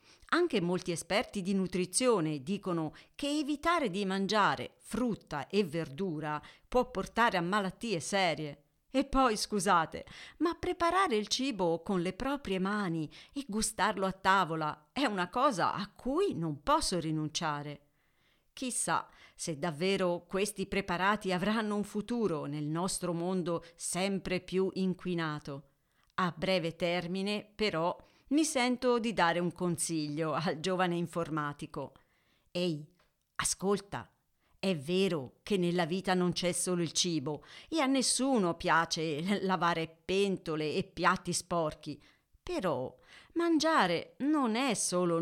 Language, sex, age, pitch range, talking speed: Italian, female, 50-69, 165-215 Hz, 125 wpm